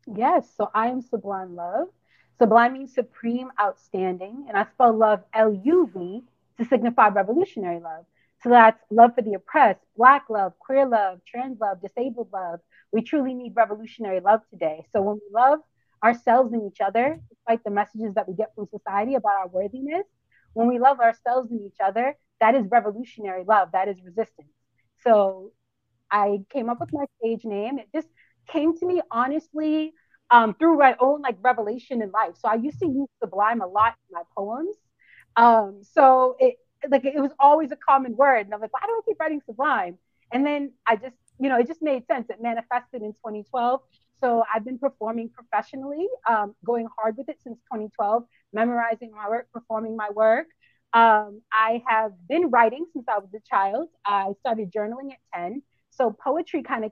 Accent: American